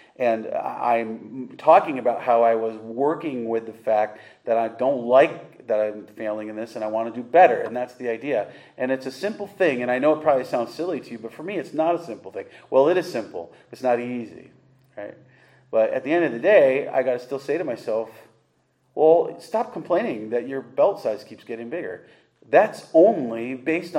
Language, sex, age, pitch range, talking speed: English, male, 40-59, 120-155 Hz, 220 wpm